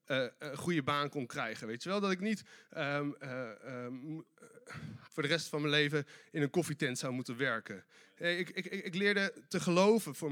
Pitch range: 160-205 Hz